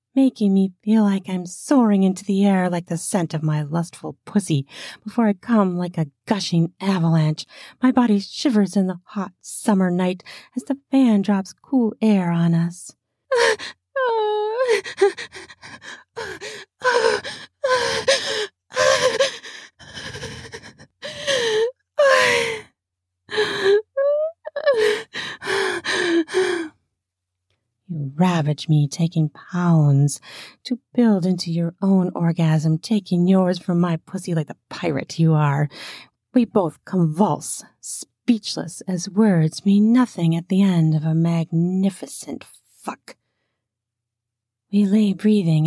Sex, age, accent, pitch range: female, 30-49, American, 155-225 Hz